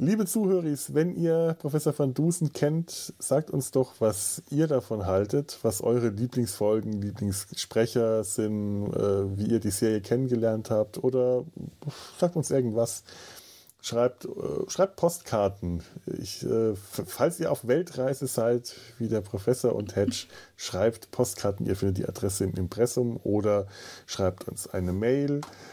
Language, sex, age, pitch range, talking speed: German, male, 20-39, 100-135 Hz, 135 wpm